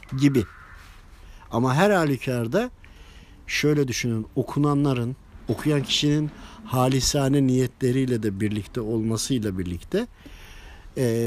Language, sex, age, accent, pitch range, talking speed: Turkish, male, 50-69, native, 110-150 Hz, 85 wpm